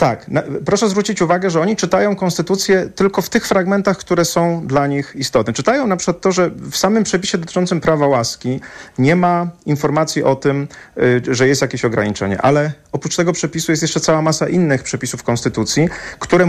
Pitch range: 140-180 Hz